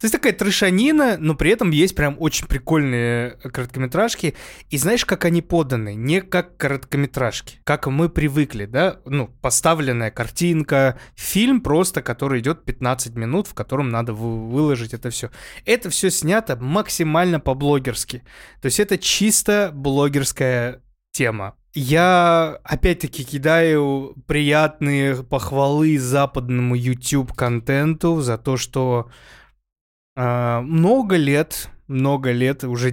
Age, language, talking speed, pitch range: 20-39, Russian, 120 wpm, 125-155 Hz